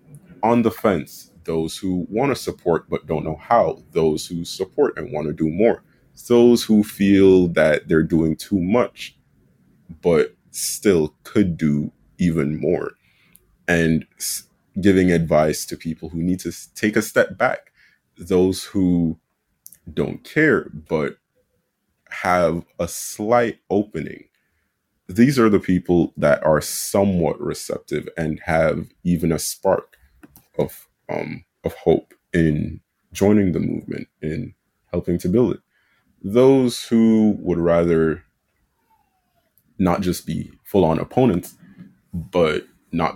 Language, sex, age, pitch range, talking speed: English, male, 30-49, 80-105 Hz, 130 wpm